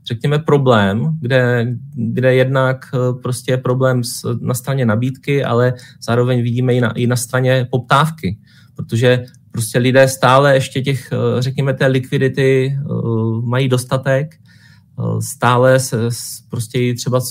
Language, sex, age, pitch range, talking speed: Czech, male, 30-49, 120-135 Hz, 120 wpm